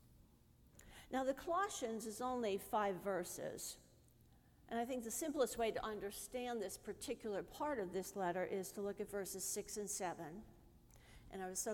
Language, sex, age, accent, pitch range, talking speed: English, female, 50-69, American, 195-265 Hz, 170 wpm